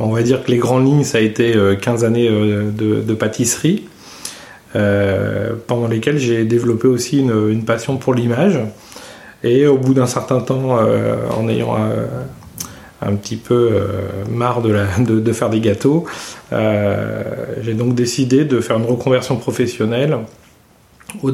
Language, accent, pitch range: French, French, 110-130 Hz